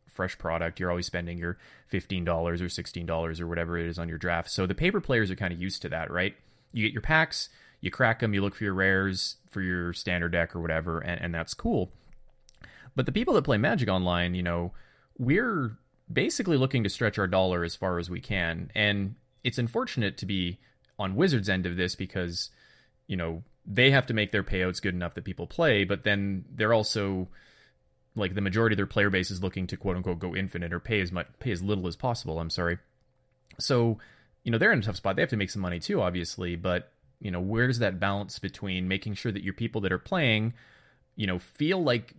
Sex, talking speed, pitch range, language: male, 225 wpm, 90-110 Hz, English